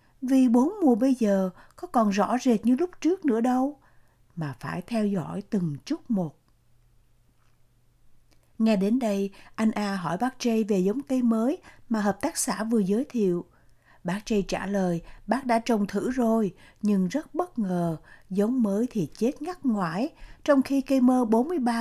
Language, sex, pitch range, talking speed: Vietnamese, female, 185-245 Hz, 175 wpm